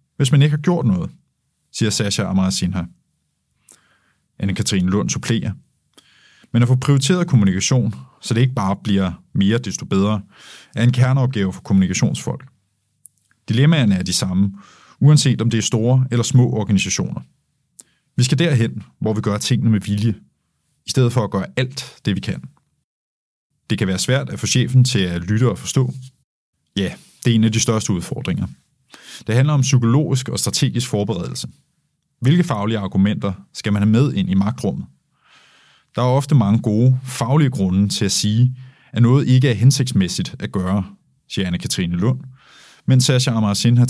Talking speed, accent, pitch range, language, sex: 170 wpm, native, 100-130 Hz, Danish, male